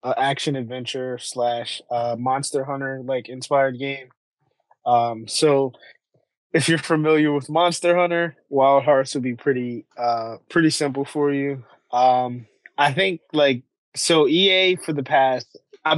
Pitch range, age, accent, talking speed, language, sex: 125-145 Hz, 20-39, American, 145 wpm, English, male